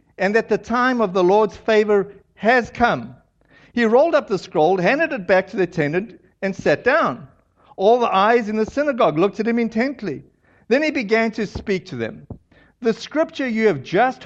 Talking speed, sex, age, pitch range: 195 wpm, male, 50-69, 185-235 Hz